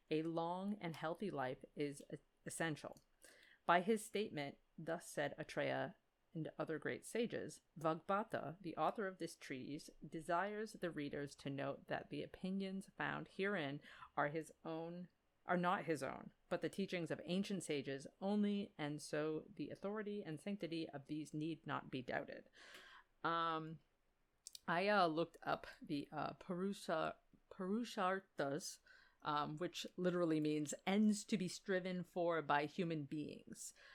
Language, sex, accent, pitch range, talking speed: English, female, American, 150-195 Hz, 140 wpm